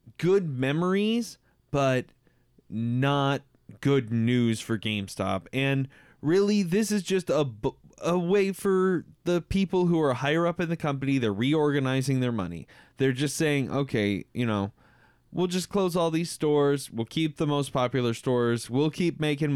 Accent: American